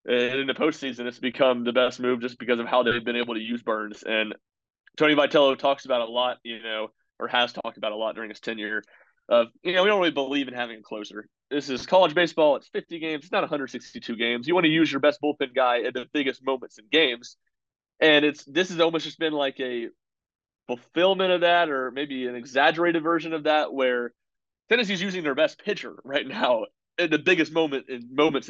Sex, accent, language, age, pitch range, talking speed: male, American, English, 30-49, 120-150 Hz, 220 wpm